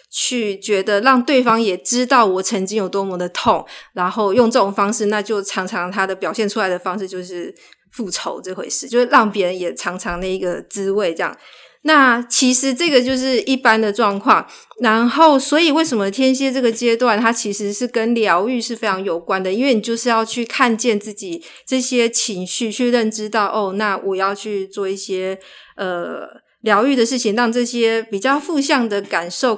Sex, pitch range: female, 200-255 Hz